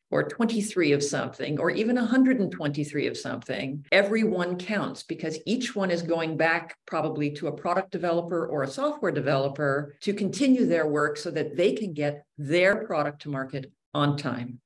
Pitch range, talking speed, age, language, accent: 145-190 Hz, 170 wpm, 50-69, English, American